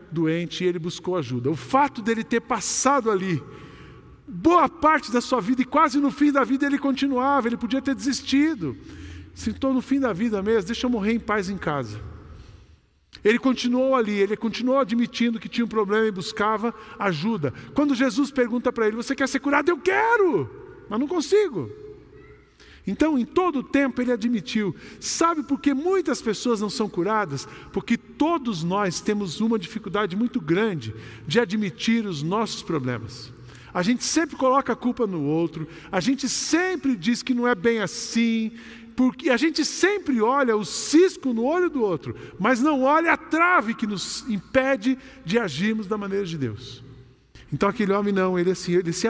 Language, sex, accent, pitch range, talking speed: Portuguese, male, Brazilian, 195-270 Hz, 180 wpm